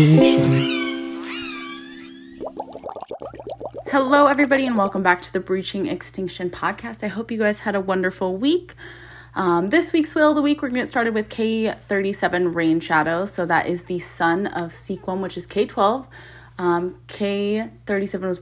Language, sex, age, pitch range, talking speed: English, female, 20-39, 175-245 Hz, 155 wpm